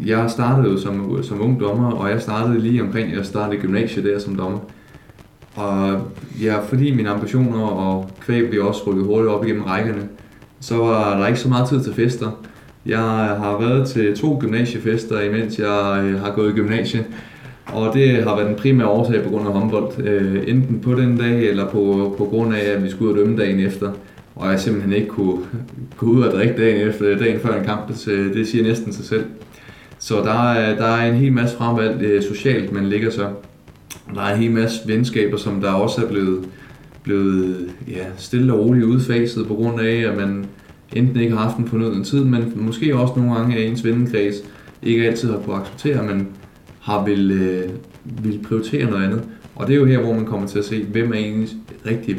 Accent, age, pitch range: native, 20-39, 100-115 Hz